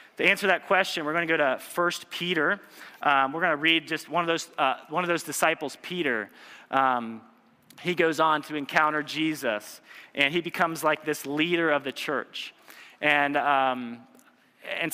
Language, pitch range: English, 130-170 Hz